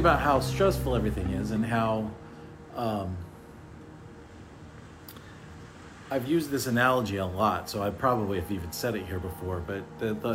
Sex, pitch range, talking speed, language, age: male, 95-115 Hz, 150 wpm, English, 40-59